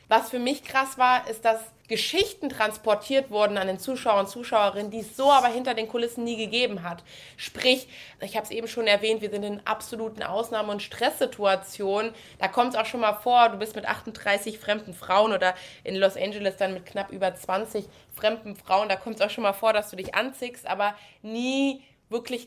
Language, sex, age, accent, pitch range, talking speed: German, female, 20-39, German, 200-235 Hz, 205 wpm